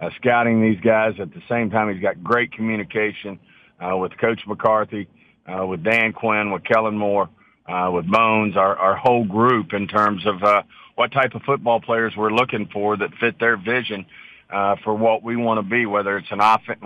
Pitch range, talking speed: 100-115 Hz, 205 wpm